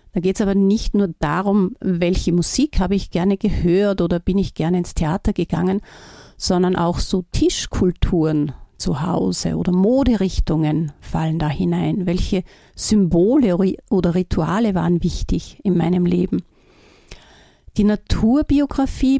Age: 50-69